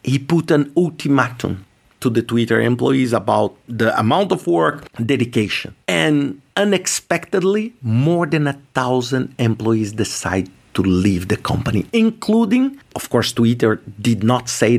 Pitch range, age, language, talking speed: 120-175 Hz, 50-69, English, 140 wpm